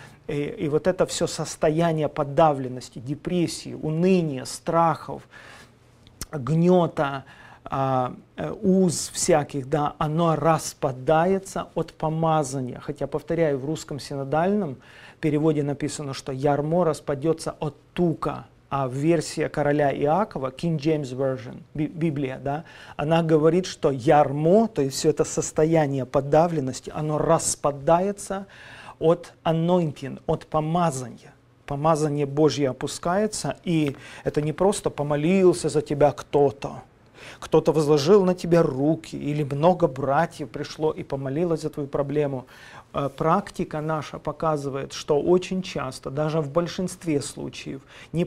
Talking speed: 115 wpm